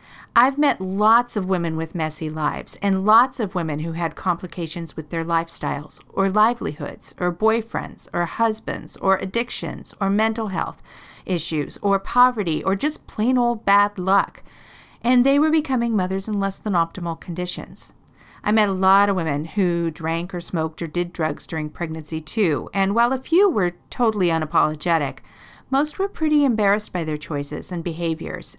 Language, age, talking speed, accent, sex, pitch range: English, 50-69, 170 wpm, American, female, 165-215 Hz